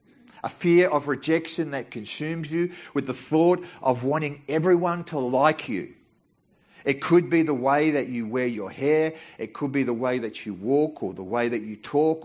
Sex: male